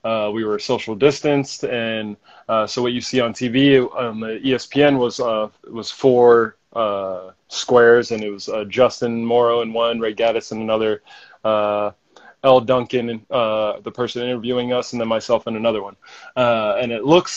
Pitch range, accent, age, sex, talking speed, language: 115-130 Hz, American, 20-39, male, 185 wpm, English